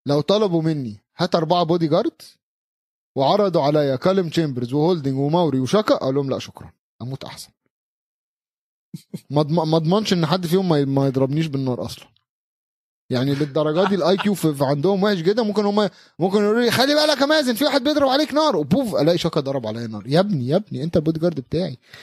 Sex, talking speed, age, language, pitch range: male, 185 wpm, 30-49, Arabic, 130-195 Hz